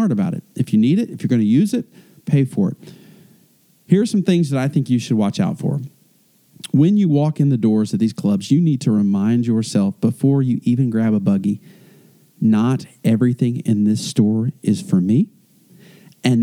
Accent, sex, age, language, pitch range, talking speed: American, male, 40-59, English, 120-185 Hz, 205 wpm